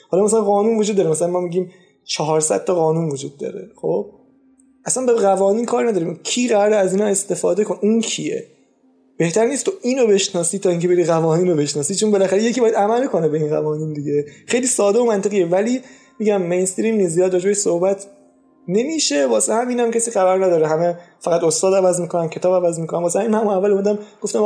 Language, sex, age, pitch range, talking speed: Persian, male, 20-39, 155-200 Hz, 195 wpm